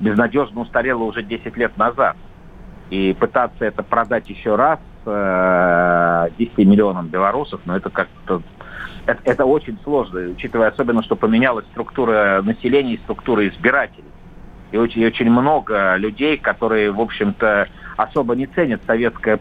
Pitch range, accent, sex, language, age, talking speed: 100-125 Hz, native, male, Russian, 50-69, 135 wpm